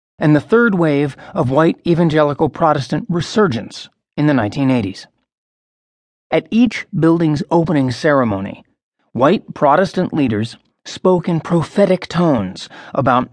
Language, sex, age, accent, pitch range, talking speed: English, male, 40-59, American, 130-170 Hz, 115 wpm